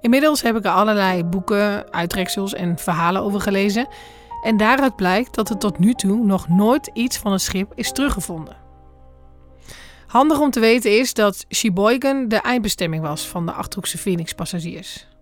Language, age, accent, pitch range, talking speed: Dutch, 20-39, Dutch, 190-235 Hz, 160 wpm